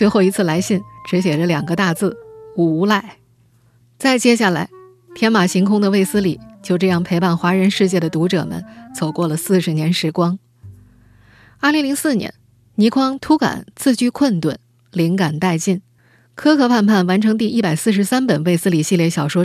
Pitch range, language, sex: 160-210 Hz, Chinese, female